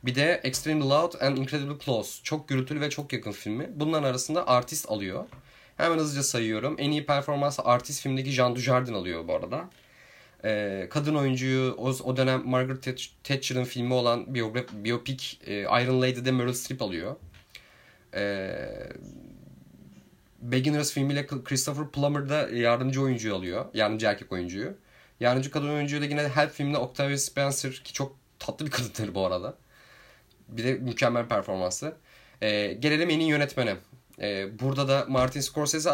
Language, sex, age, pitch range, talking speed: Turkish, male, 30-49, 120-145 Hz, 145 wpm